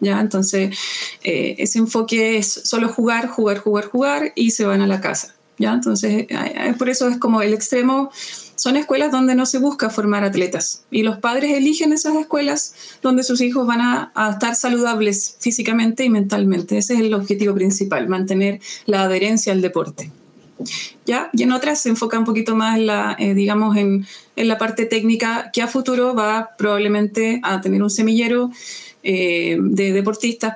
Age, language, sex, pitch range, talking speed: 30-49, Spanish, female, 195-235 Hz, 175 wpm